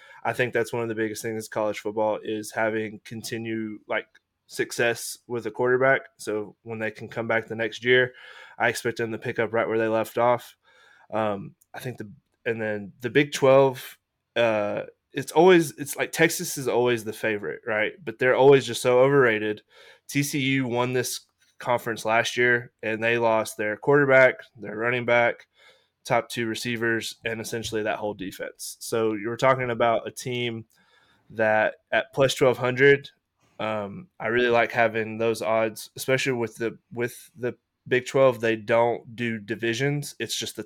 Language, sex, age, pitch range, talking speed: English, male, 20-39, 110-125 Hz, 170 wpm